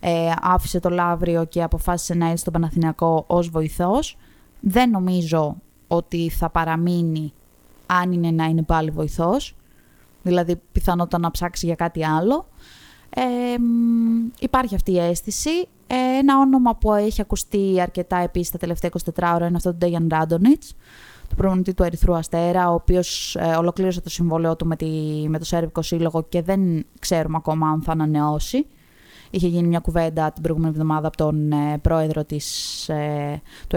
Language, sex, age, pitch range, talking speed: Greek, female, 20-39, 160-195 Hz, 160 wpm